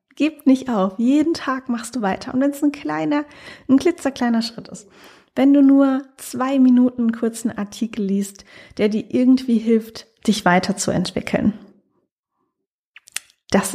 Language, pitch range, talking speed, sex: German, 200-245 Hz, 150 wpm, female